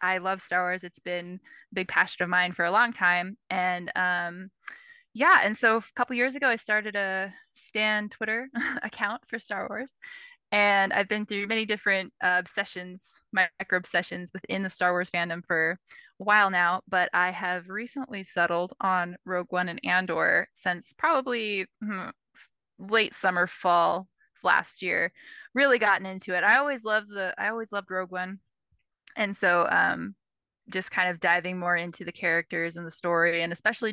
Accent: American